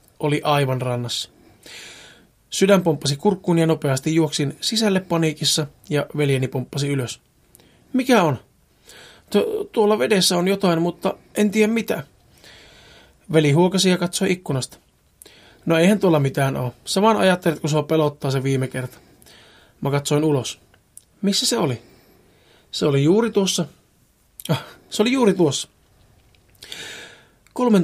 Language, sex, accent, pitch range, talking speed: Finnish, male, native, 140-185 Hz, 125 wpm